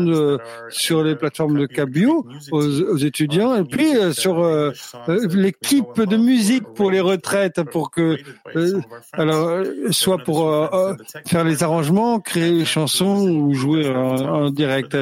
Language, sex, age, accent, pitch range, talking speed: English, male, 50-69, French, 140-185 Hz, 150 wpm